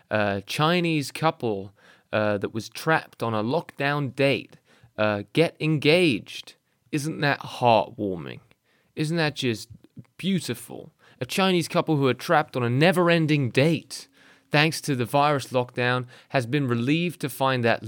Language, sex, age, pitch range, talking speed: English, male, 20-39, 115-150 Hz, 140 wpm